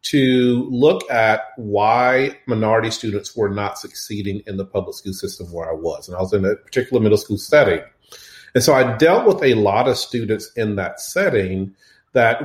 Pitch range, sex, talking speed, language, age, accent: 105-135 Hz, male, 190 wpm, English, 40-59, American